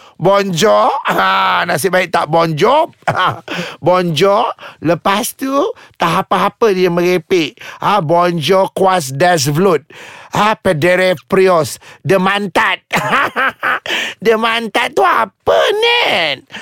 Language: Malay